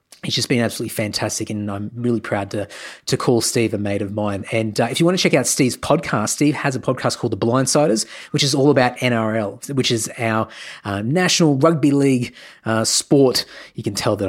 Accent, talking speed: Australian, 220 wpm